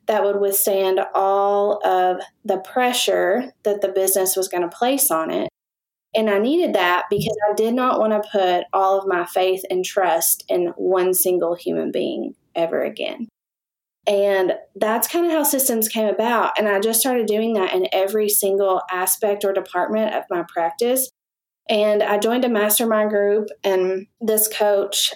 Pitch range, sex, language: 195-235 Hz, female, English